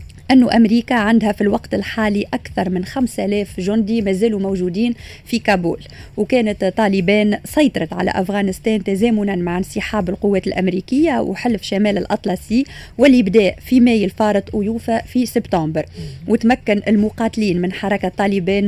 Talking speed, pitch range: 130 wpm, 195-230 Hz